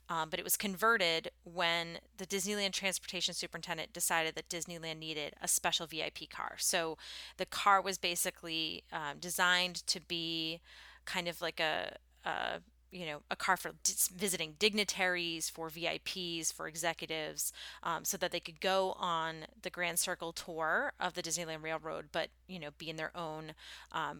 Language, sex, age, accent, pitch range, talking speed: English, female, 30-49, American, 165-195 Hz, 160 wpm